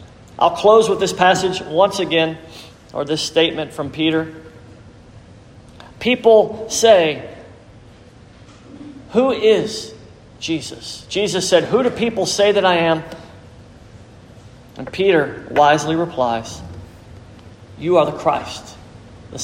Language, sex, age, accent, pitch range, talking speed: English, male, 40-59, American, 115-170 Hz, 110 wpm